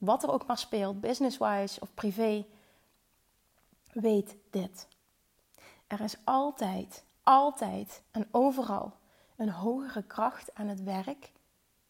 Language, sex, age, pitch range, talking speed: Dutch, female, 30-49, 205-230 Hz, 110 wpm